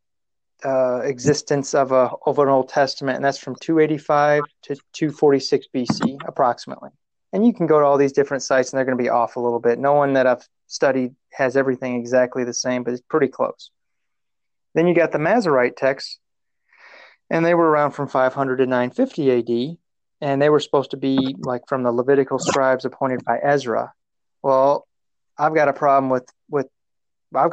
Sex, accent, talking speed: male, American, 200 wpm